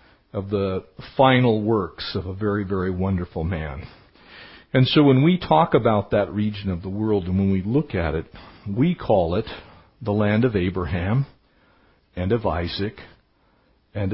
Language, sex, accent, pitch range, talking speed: English, male, American, 100-140 Hz, 160 wpm